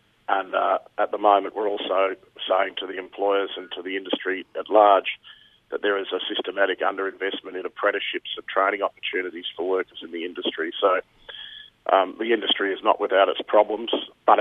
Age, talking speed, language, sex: 50-69, 180 wpm, English, male